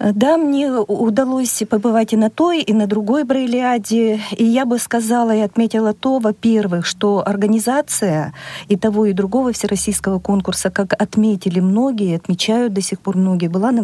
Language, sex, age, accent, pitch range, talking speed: Russian, female, 40-59, native, 190-235 Hz, 160 wpm